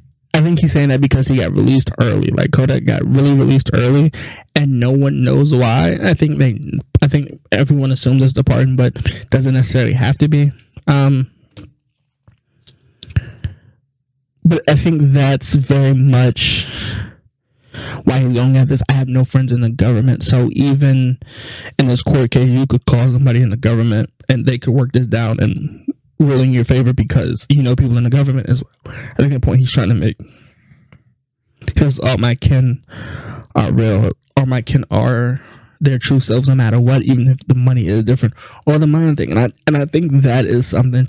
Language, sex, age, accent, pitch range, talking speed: English, male, 20-39, American, 120-140 Hz, 190 wpm